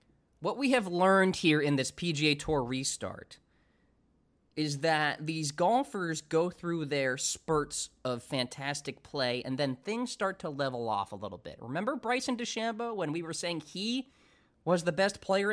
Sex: male